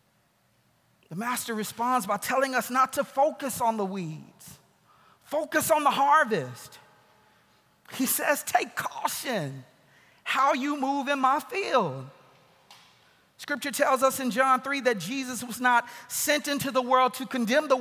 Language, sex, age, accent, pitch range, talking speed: English, male, 40-59, American, 230-280 Hz, 145 wpm